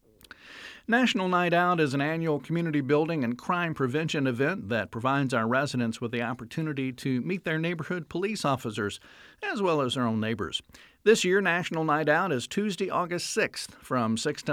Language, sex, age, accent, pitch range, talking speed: English, male, 50-69, American, 125-175 Hz, 180 wpm